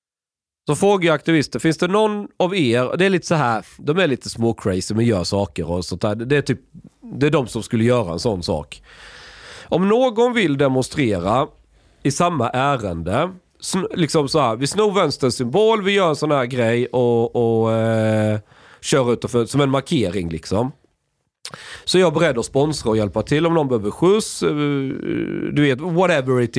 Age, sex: 30-49, male